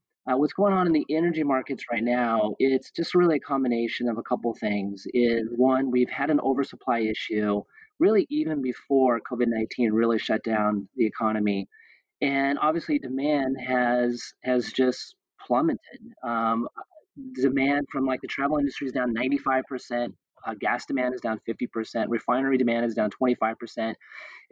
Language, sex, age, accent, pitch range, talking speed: English, male, 30-49, American, 120-145 Hz, 155 wpm